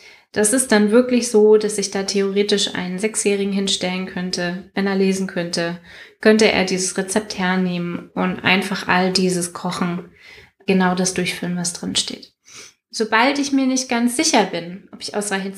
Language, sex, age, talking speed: German, female, 20-39, 165 wpm